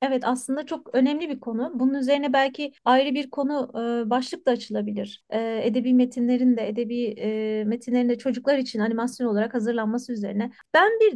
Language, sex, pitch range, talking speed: English, female, 230-270 Hz, 170 wpm